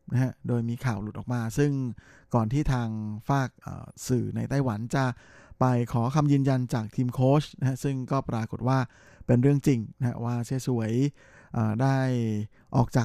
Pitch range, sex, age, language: 115-140 Hz, male, 20-39, Thai